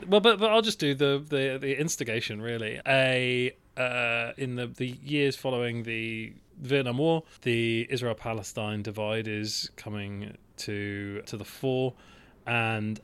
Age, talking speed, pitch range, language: 30-49, 145 wpm, 105-125 Hz, English